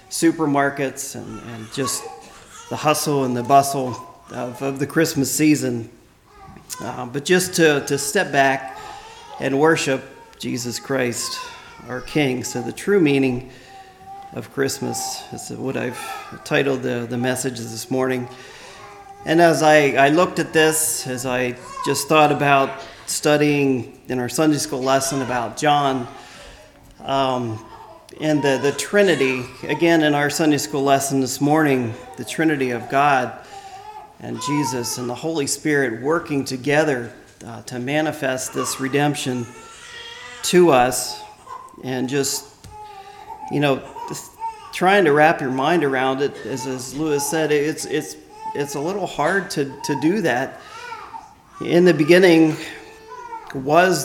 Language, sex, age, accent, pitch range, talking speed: English, male, 40-59, American, 130-170 Hz, 140 wpm